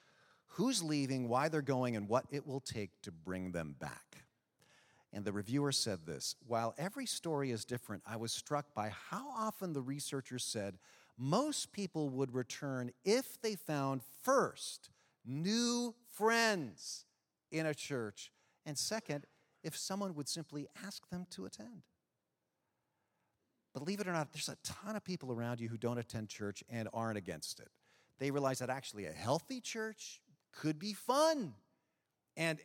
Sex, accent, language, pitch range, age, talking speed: male, American, English, 115-155 Hz, 40-59, 160 wpm